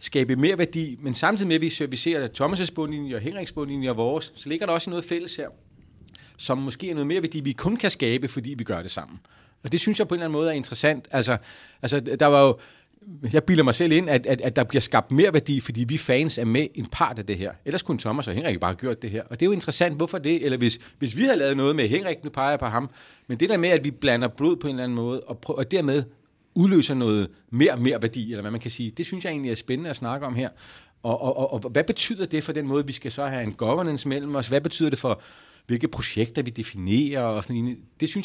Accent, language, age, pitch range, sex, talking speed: native, Danish, 30-49, 120-155 Hz, male, 280 wpm